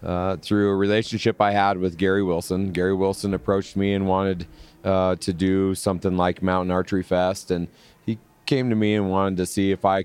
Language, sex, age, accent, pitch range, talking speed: English, male, 30-49, American, 90-100 Hz, 205 wpm